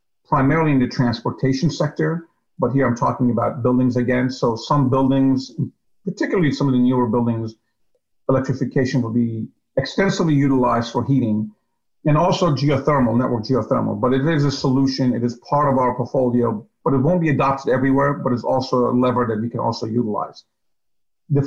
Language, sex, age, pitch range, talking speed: English, male, 50-69, 115-135 Hz, 170 wpm